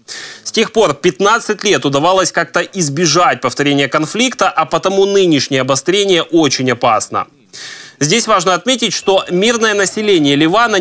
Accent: native